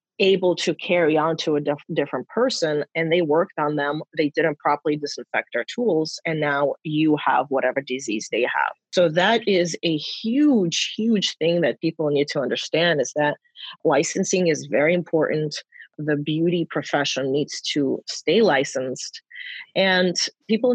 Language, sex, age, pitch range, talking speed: English, female, 30-49, 150-185 Hz, 160 wpm